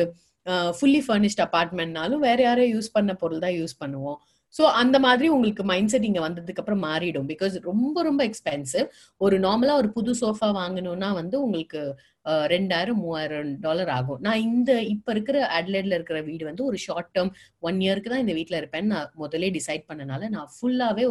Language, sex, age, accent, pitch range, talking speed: Tamil, female, 30-49, native, 155-225 Hz, 165 wpm